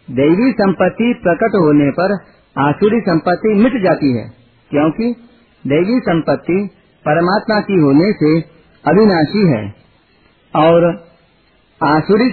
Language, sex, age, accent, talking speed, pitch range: Hindi, male, 50-69, native, 100 wpm, 150-200 Hz